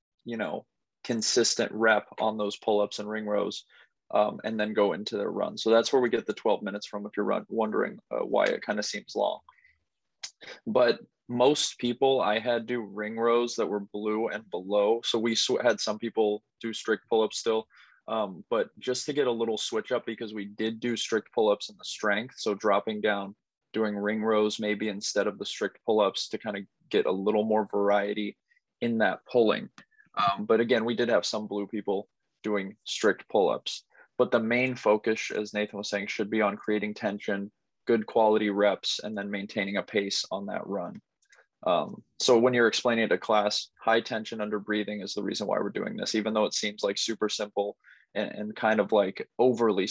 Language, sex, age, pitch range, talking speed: English, male, 20-39, 105-115 Hz, 200 wpm